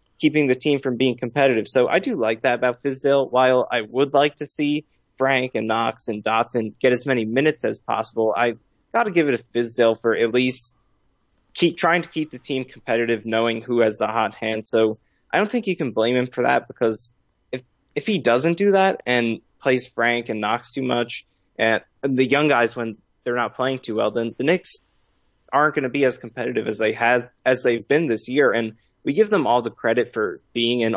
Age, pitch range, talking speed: 20-39, 110-130 Hz, 220 wpm